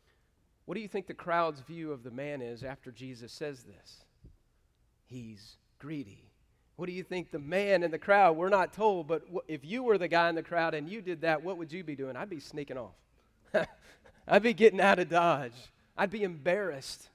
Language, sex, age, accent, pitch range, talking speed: English, male, 40-59, American, 130-180 Hz, 210 wpm